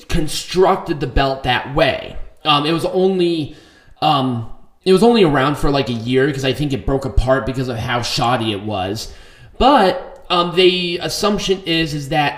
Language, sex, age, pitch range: English, male, 20-39, 130-165 Hz